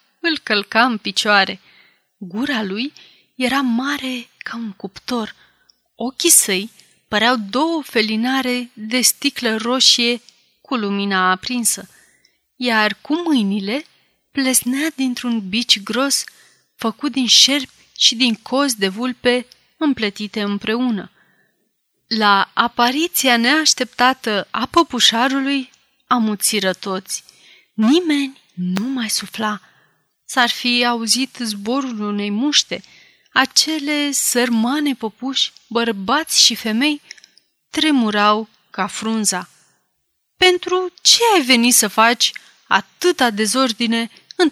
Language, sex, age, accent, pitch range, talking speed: Romanian, female, 30-49, native, 215-275 Hz, 100 wpm